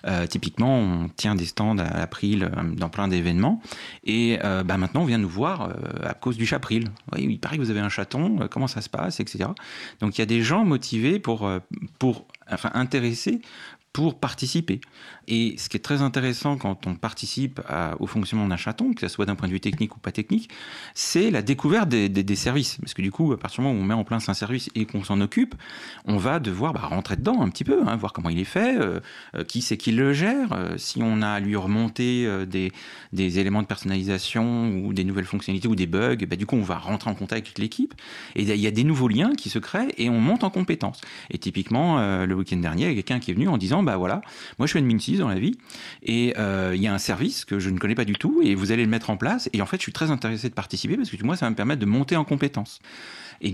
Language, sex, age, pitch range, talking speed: French, male, 40-59, 95-125 Hz, 265 wpm